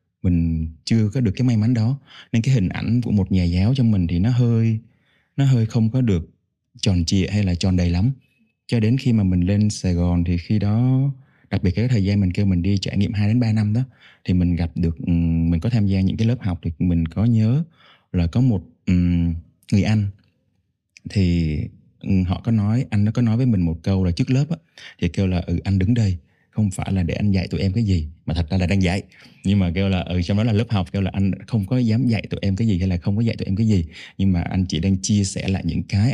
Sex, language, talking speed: male, Vietnamese, 270 wpm